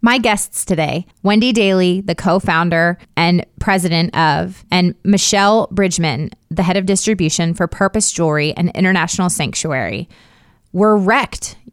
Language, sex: English, female